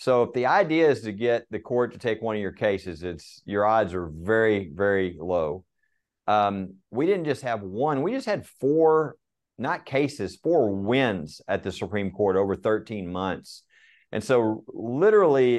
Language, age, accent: English, 50-69, American